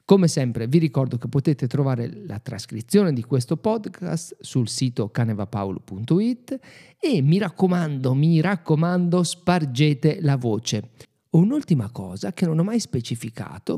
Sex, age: male, 40-59